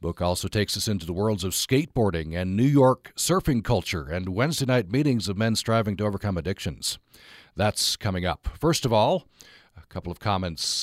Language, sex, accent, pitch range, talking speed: English, male, American, 90-120 Hz, 190 wpm